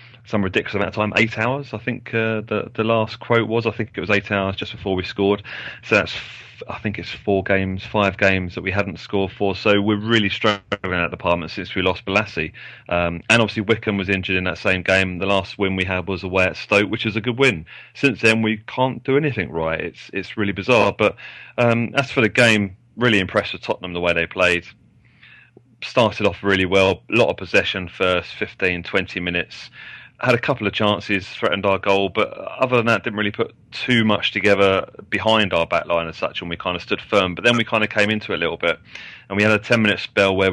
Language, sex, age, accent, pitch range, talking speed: English, male, 30-49, British, 95-110 Hz, 235 wpm